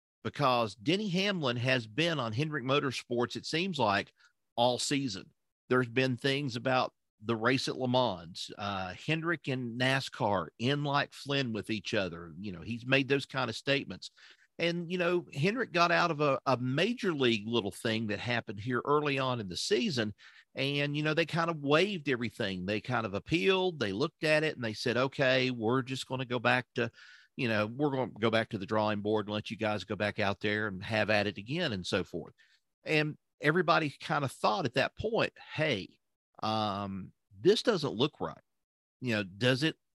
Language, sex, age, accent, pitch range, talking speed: English, male, 50-69, American, 110-155 Hz, 200 wpm